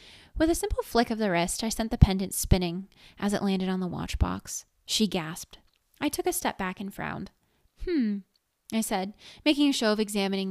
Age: 20-39